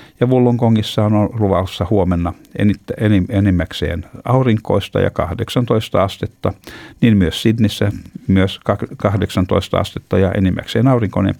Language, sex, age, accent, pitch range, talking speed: Finnish, male, 60-79, native, 90-110 Hz, 95 wpm